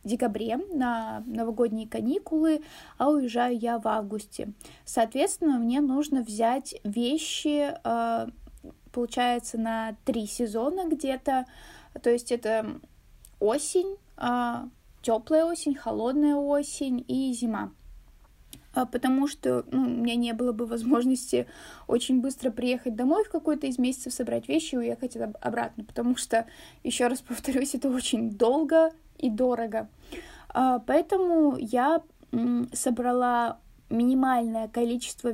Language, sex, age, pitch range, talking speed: Russian, female, 20-39, 235-275 Hz, 115 wpm